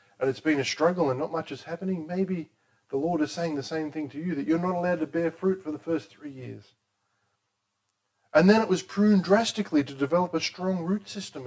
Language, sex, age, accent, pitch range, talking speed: English, male, 40-59, Australian, 100-165 Hz, 230 wpm